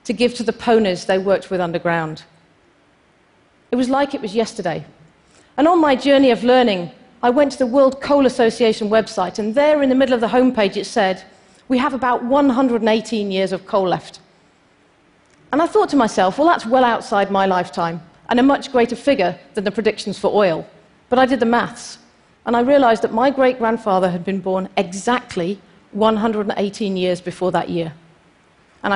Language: Portuguese